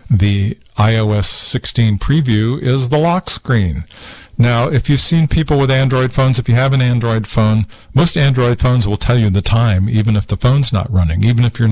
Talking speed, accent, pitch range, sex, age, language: 200 wpm, American, 95-125 Hz, male, 50-69, English